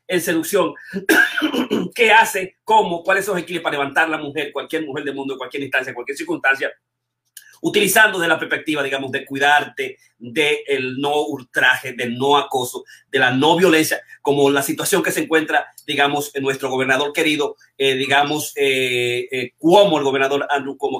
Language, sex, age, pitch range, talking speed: Spanish, male, 30-49, 140-185 Hz, 170 wpm